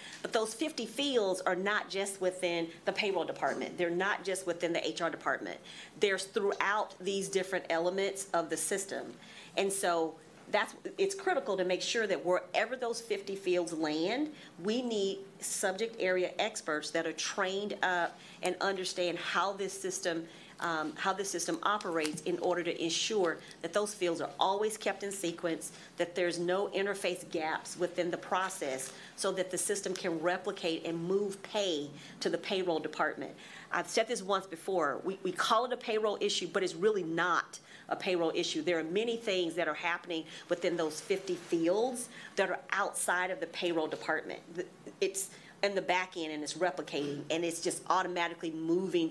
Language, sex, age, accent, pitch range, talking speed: English, female, 40-59, American, 165-195 Hz, 175 wpm